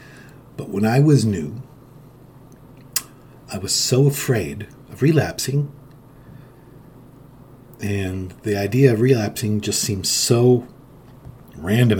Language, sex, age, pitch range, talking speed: English, male, 50-69, 105-135 Hz, 100 wpm